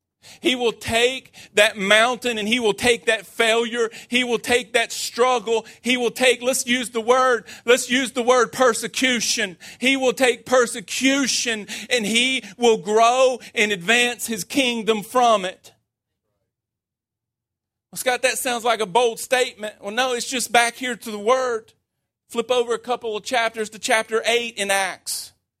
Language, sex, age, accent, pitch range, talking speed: English, male, 40-59, American, 215-250 Hz, 160 wpm